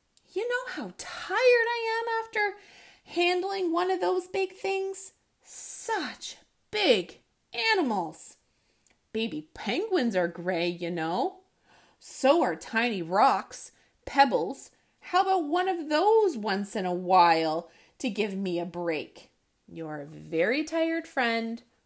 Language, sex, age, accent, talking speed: English, female, 30-49, American, 125 wpm